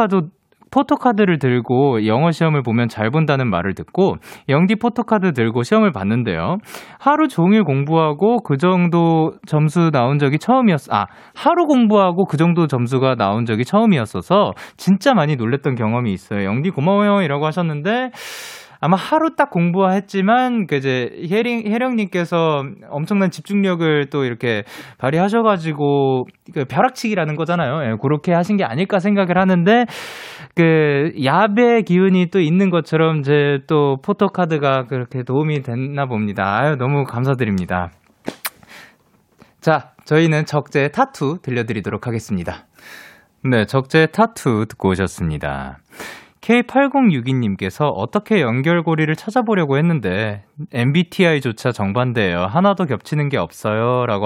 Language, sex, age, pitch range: Korean, male, 20-39, 125-200 Hz